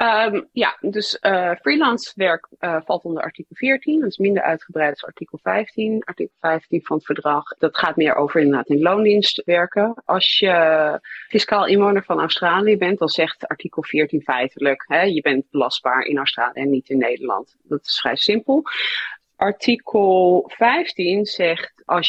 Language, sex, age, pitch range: Dutch, female, 30-49, 145-195 Hz